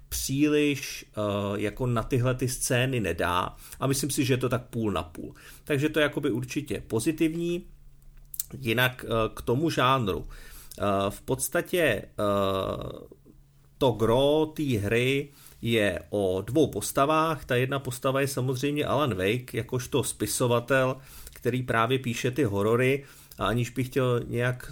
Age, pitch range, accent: 40-59, 110-140 Hz, native